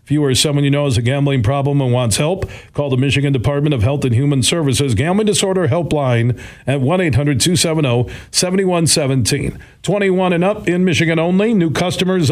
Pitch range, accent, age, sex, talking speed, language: 125-150 Hz, American, 40-59, male, 185 wpm, English